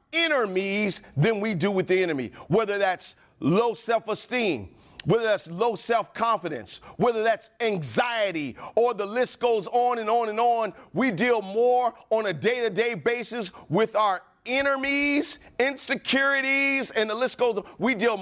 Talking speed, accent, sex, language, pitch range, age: 145 wpm, American, male, English, 165-235 Hz, 40-59